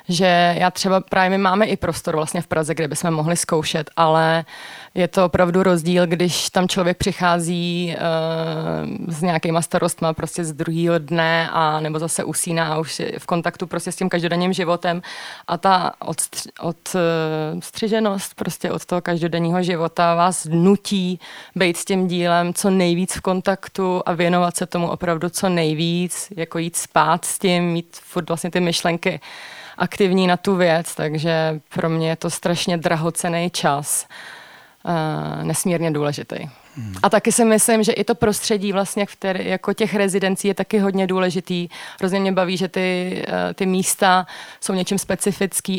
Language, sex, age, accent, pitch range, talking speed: Czech, female, 30-49, native, 165-185 Hz, 160 wpm